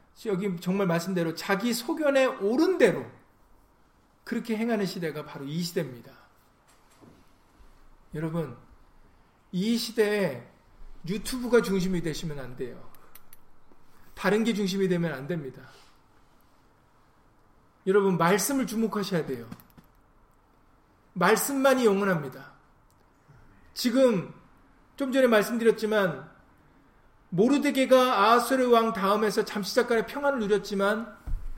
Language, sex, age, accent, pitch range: Korean, male, 40-59, native, 180-250 Hz